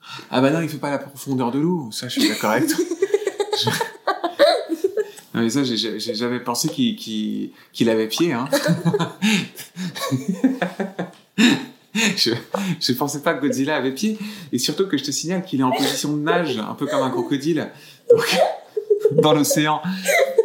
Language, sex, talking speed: French, male, 170 wpm